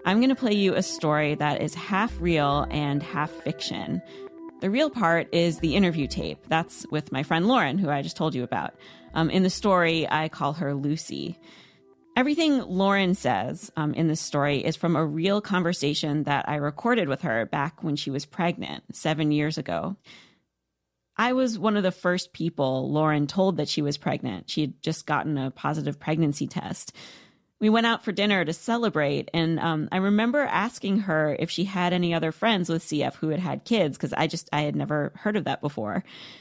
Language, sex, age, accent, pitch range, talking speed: English, female, 30-49, American, 150-200 Hz, 200 wpm